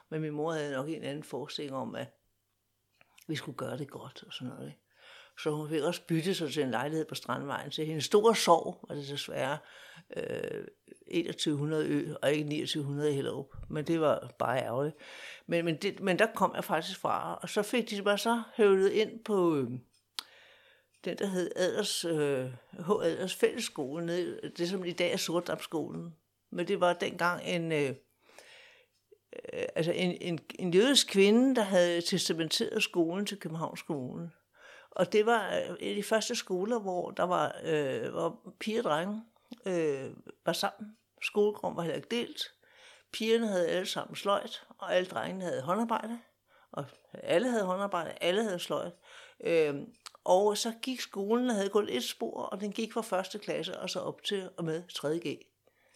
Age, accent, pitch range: 60-79, native, 160-225 Hz